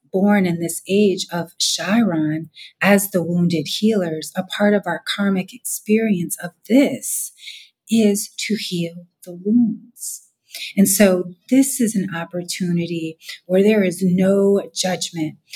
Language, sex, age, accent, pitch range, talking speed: English, female, 40-59, American, 165-200 Hz, 130 wpm